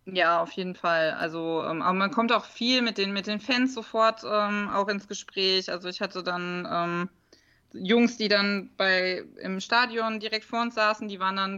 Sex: female